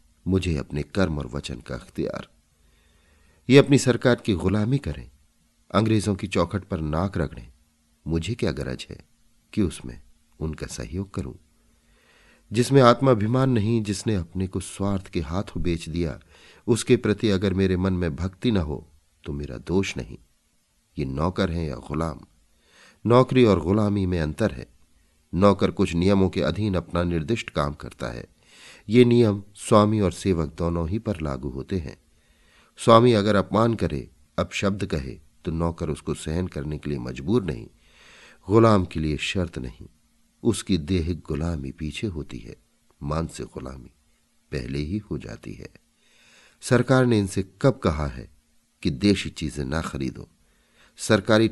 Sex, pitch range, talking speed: male, 75-100 Hz, 155 wpm